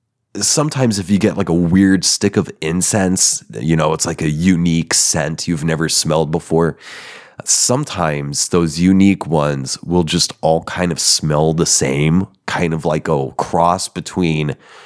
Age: 30-49